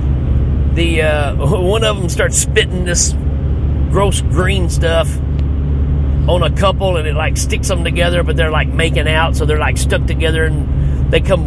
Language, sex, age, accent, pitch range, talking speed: English, male, 40-59, American, 70-115 Hz, 175 wpm